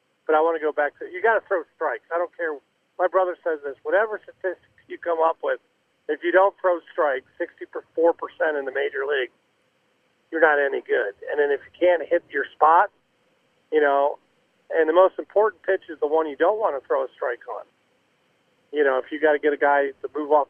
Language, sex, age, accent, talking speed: English, male, 40-59, American, 225 wpm